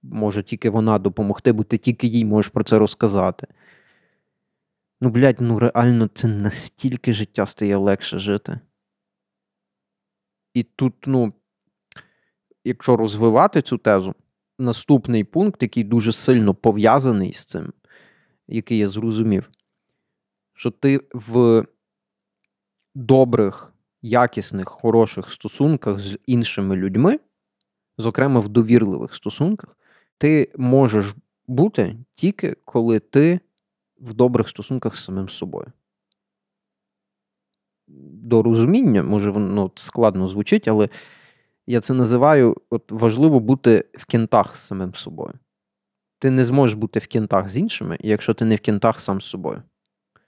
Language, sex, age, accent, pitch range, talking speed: Ukrainian, male, 20-39, native, 105-125 Hz, 120 wpm